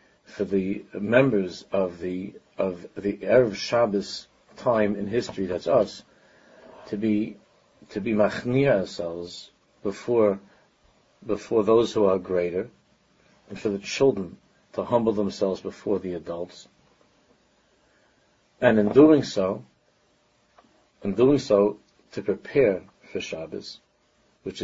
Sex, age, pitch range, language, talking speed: male, 60-79, 100-135 Hz, English, 115 wpm